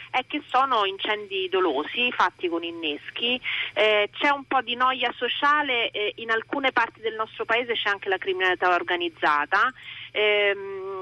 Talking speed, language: 155 wpm, Italian